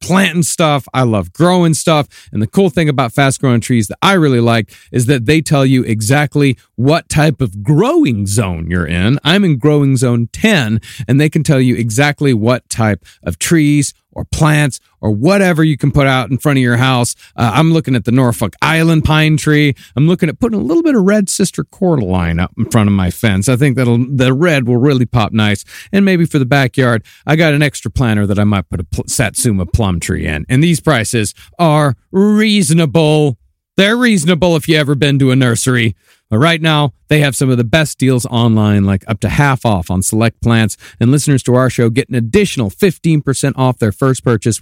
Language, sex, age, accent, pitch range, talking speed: English, male, 40-59, American, 110-155 Hz, 215 wpm